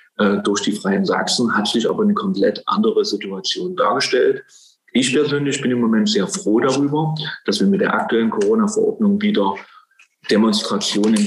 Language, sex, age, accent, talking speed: German, male, 40-59, German, 150 wpm